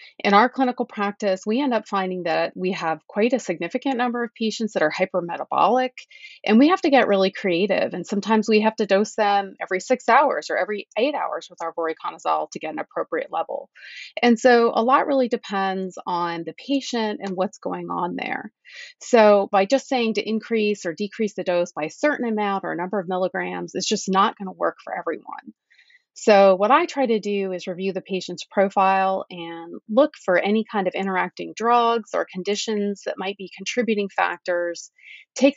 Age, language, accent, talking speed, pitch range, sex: 30-49, English, American, 195 wpm, 180-245 Hz, female